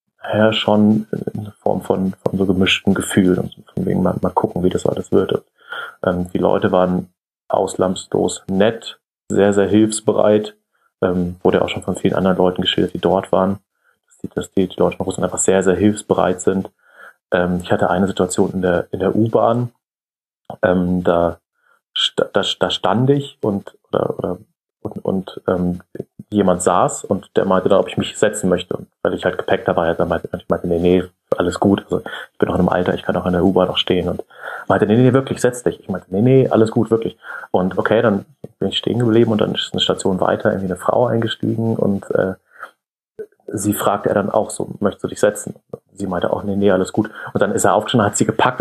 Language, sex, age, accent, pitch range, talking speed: German, male, 30-49, German, 90-110 Hz, 215 wpm